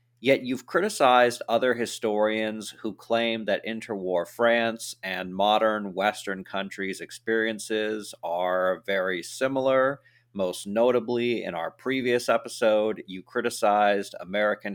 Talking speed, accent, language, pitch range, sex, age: 110 wpm, American, English, 100-120 Hz, male, 40-59